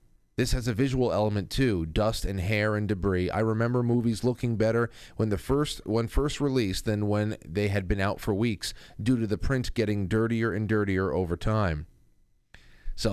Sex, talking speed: male, 185 wpm